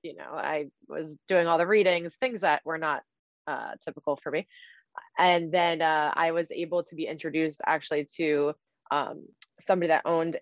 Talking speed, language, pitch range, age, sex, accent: 180 wpm, English, 150-180 Hz, 20-39, female, American